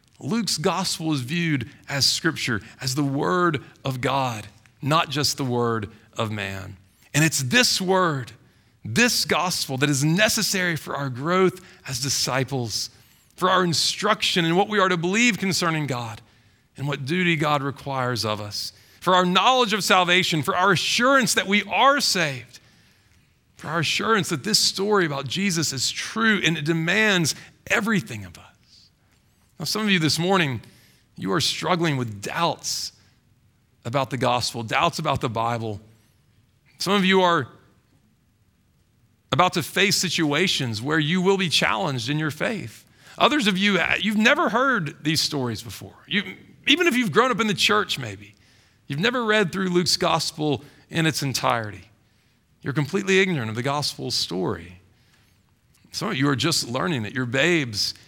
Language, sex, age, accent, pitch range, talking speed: English, male, 40-59, American, 120-180 Hz, 160 wpm